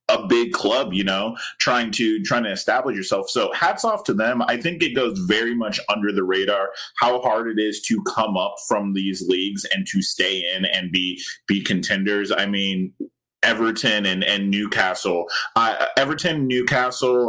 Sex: male